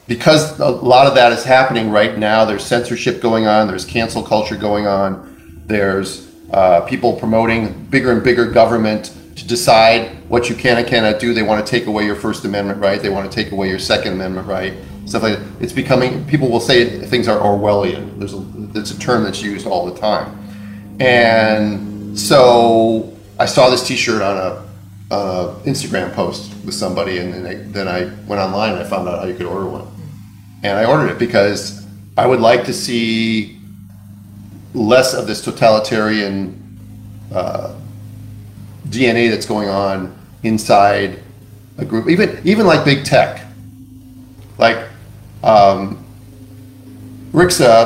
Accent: American